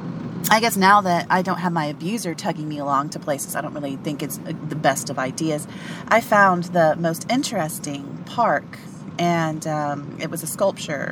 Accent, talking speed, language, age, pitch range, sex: American, 190 wpm, English, 30-49, 155-195 Hz, female